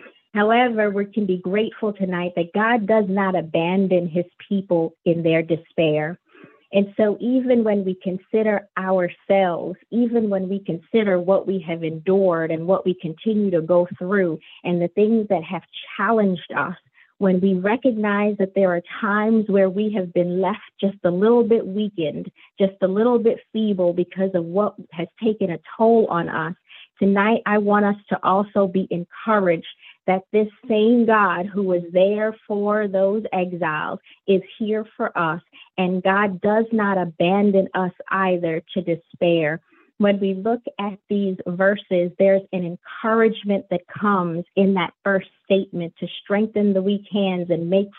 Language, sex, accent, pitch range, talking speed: English, female, American, 180-210 Hz, 160 wpm